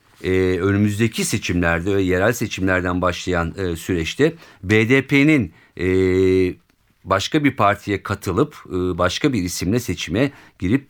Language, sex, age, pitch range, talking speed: Turkish, male, 50-69, 95-140 Hz, 115 wpm